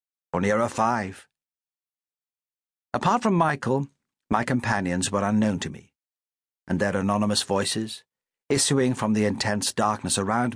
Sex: male